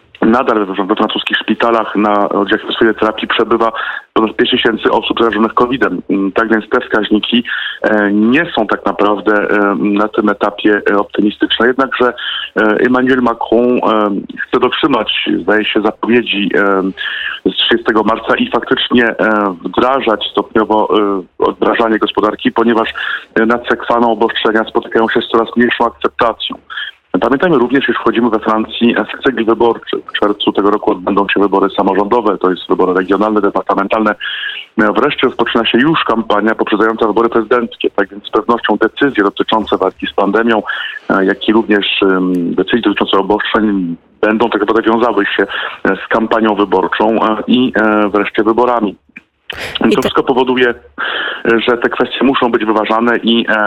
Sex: male